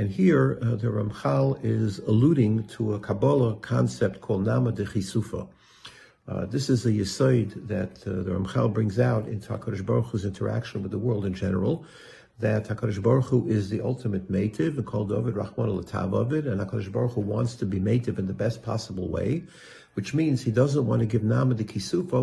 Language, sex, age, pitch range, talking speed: English, male, 50-69, 105-125 Hz, 185 wpm